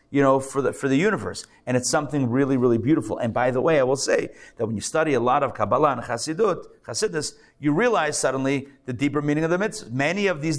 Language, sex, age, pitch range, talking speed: English, male, 40-59, 125-160 Hz, 240 wpm